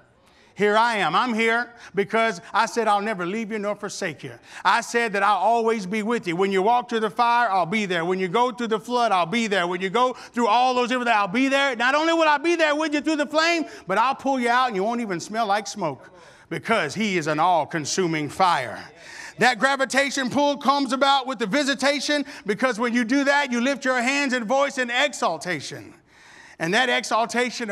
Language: English